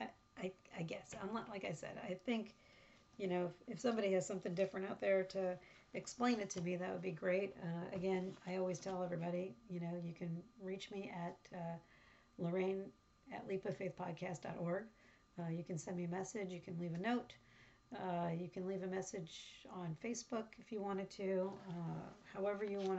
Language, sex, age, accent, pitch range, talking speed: English, female, 40-59, American, 175-195 Hz, 200 wpm